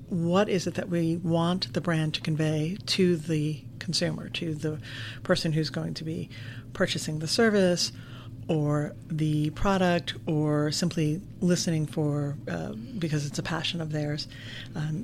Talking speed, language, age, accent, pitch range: 150 wpm, English, 40-59, American, 125-170 Hz